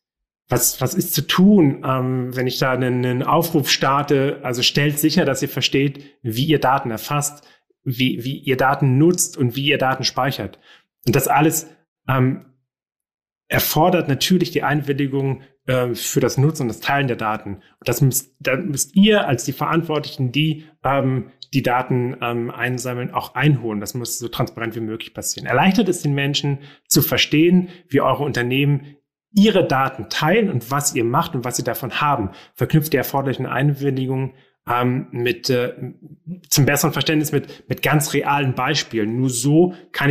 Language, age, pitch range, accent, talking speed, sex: German, 30-49, 125-150 Hz, German, 165 wpm, male